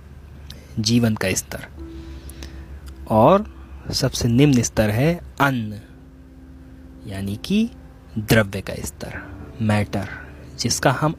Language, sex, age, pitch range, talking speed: Hindi, male, 30-49, 80-125 Hz, 90 wpm